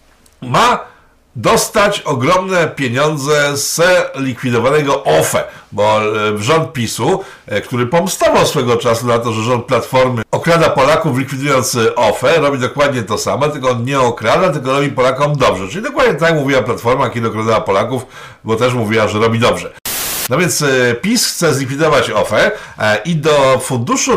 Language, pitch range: Polish, 120-170 Hz